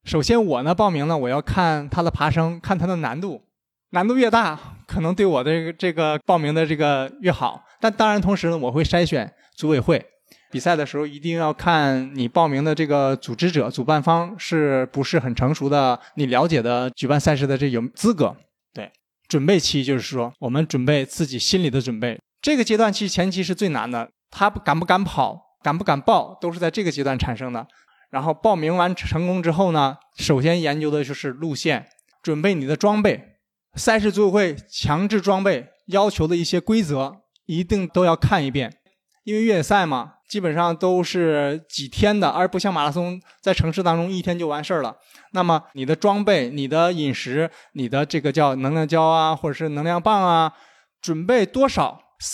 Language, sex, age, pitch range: Chinese, male, 20-39, 145-190 Hz